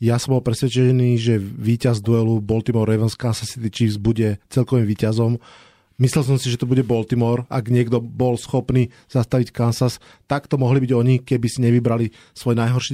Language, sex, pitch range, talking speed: Slovak, male, 120-145 Hz, 170 wpm